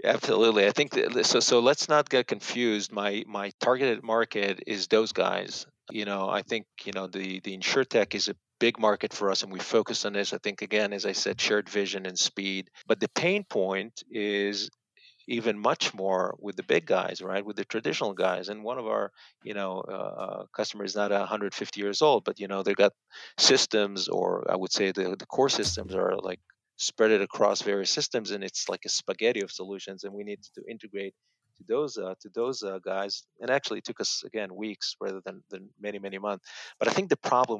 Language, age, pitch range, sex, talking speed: English, 40-59, 95-110 Hz, male, 220 wpm